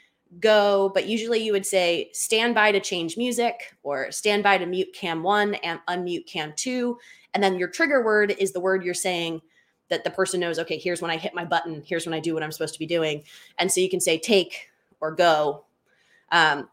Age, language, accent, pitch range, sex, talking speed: 20-39, English, American, 165-210 Hz, female, 220 wpm